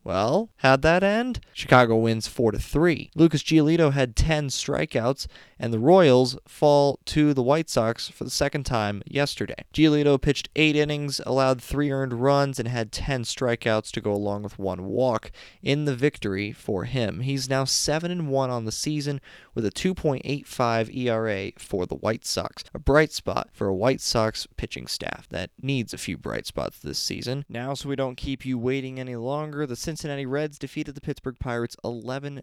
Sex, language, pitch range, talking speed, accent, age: male, English, 110-140 Hz, 185 wpm, American, 20-39